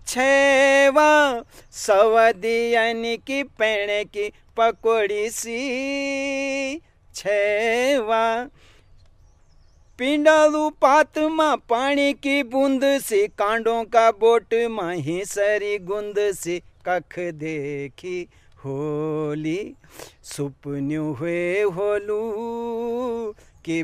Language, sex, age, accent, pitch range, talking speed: Hindi, male, 40-59, native, 165-255 Hz, 65 wpm